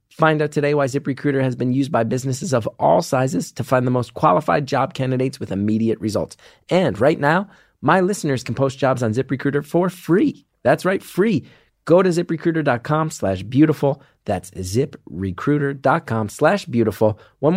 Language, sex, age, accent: English, male, 30-49, American